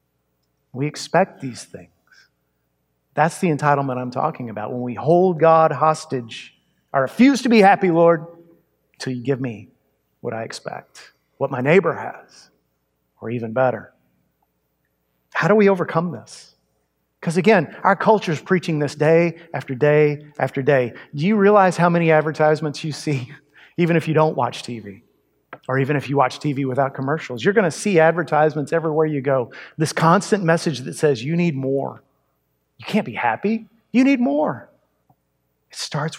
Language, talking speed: English, 165 wpm